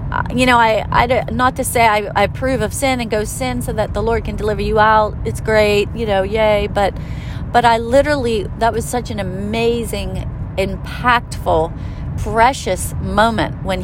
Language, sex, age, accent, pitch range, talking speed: English, female, 40-59, American, 195-245 Hz, 180 wpm